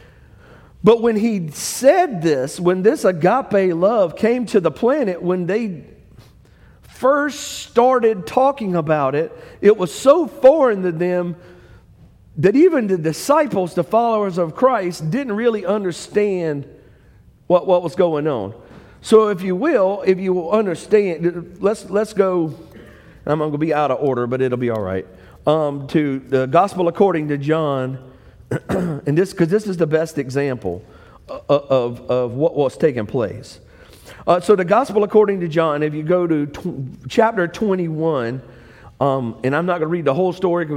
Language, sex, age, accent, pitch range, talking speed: English, male, 50-69, American, 155-200 Hz, 160 wpm